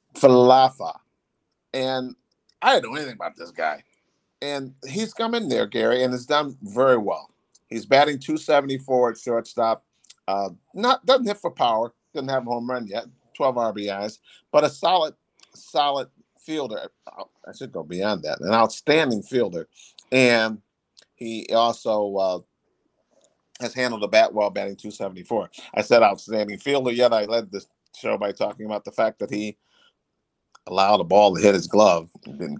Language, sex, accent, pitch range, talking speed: English, male, American, 110-160 Hz, 170 wpm